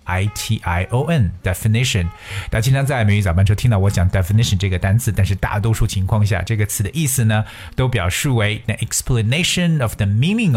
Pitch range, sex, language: 100-135 Hz, male, Chinese